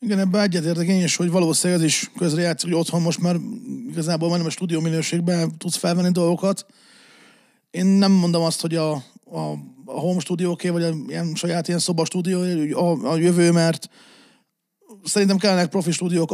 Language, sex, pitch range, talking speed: Hungarian, male, 165-200 Hz, 170 wpm